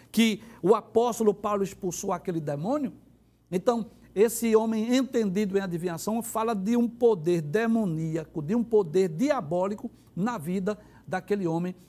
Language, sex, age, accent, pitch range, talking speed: Portuguese, male, 60-79, Brazilian, 205-270 Hz, 130 wpm